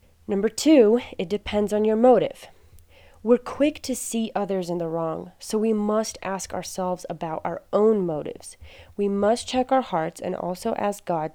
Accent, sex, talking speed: American, female, 175 wpm